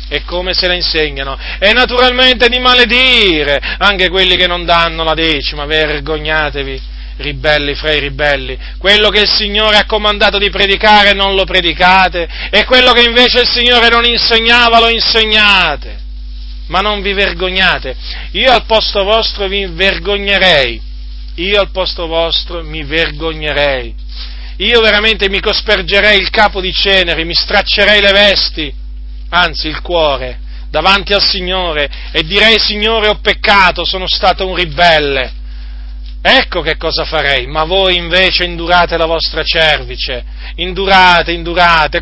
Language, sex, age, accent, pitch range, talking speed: Italian, male, 40-59, native, 155-200 Hz, 140 wpm